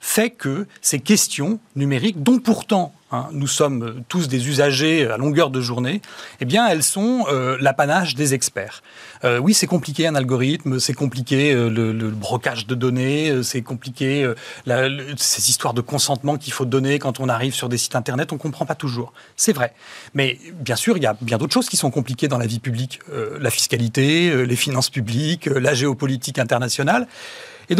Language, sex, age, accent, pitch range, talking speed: French, male, 40-59, French, 130-190 Hz, 205 wpm